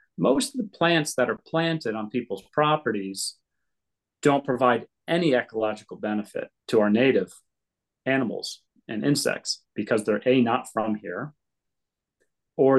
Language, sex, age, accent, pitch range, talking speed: English, male, 30-49, American, 105-140 Hz, 130 wpm